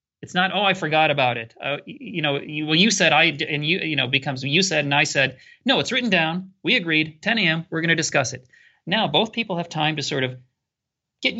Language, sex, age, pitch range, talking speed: English, male, 40-59, 140-185 Hz, 245 wpm